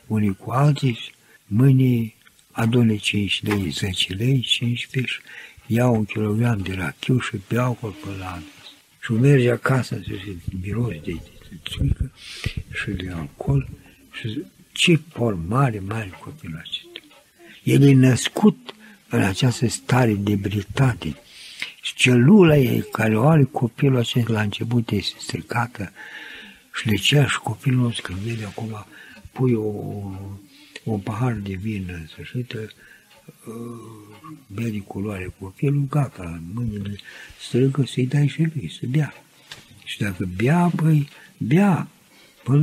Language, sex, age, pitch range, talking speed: Romanian, male, 60-79, 100-135 Hz, 140 wpm